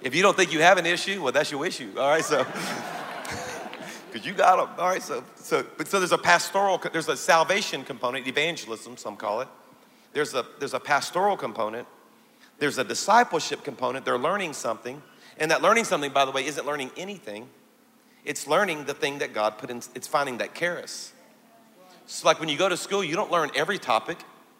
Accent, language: American, English